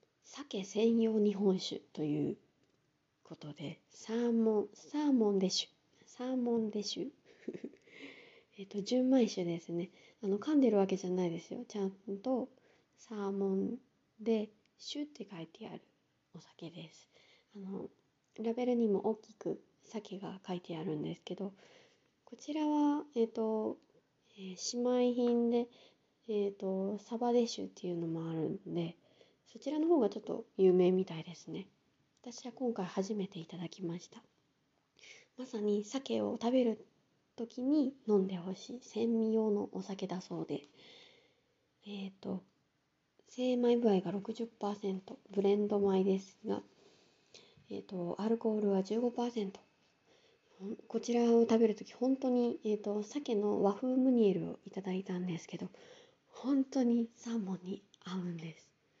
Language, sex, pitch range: Japanese, female, 190-240 Hz